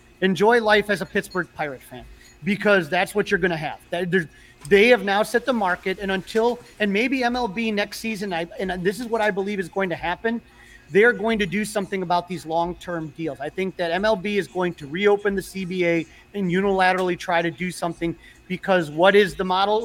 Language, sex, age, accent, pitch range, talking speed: English, male, 30-49, American, 180-225 Hz, 205 wpm